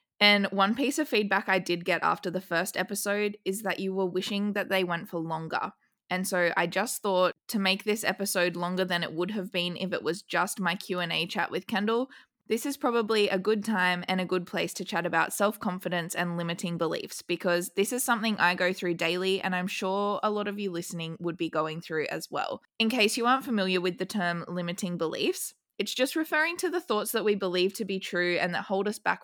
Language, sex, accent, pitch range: English, female, Australian, 175-215 Hz